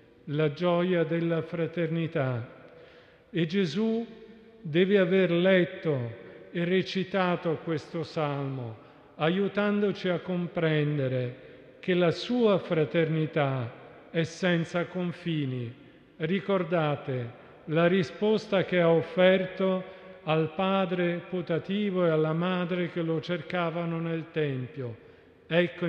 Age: 50-69